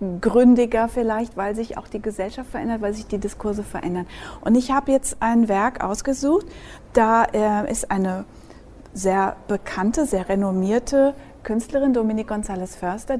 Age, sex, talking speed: 40-59, female, 140 wpm